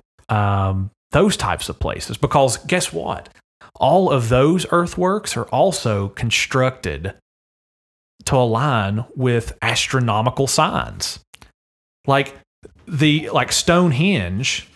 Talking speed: 100 wpm